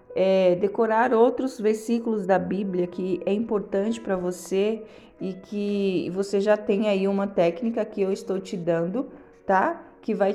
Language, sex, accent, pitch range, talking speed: Portuguese, female, Brazilian, 190-230 Hz, 150 wpm